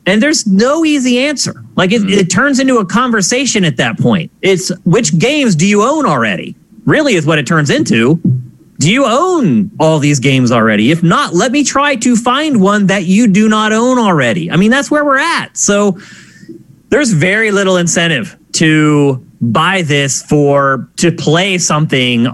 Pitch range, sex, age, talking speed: 150-225 Hz, male, 30-49, 180 wpm